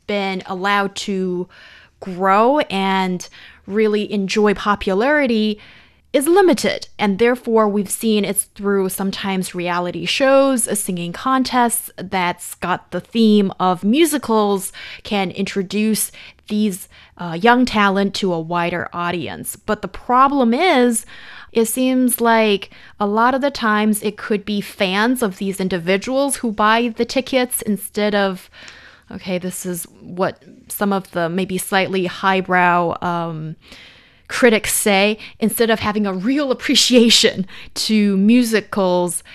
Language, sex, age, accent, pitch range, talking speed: English, female, 20-39, American, 190-230 Hz, 130 wpm